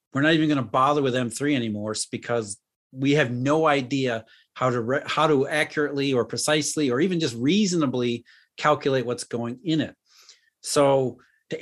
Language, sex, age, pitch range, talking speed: English, male, 40-59, 130-165 Hz, 170 wpm